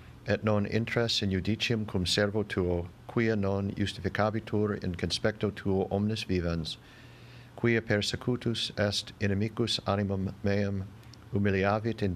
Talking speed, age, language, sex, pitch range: 120 wpm, 50-69, English, male, 100-115 Hz